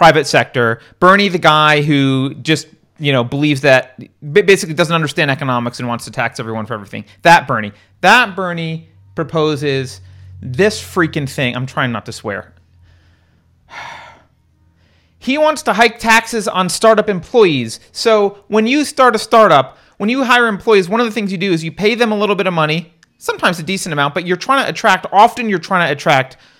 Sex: male